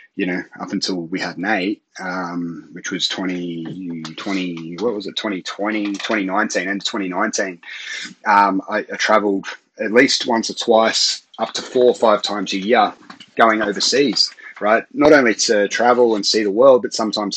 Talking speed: 165 wpm